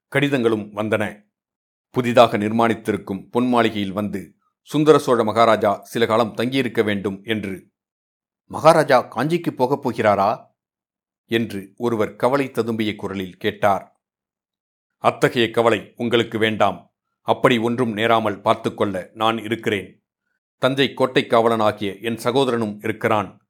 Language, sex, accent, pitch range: Tamil, male, native, 105-125 Hz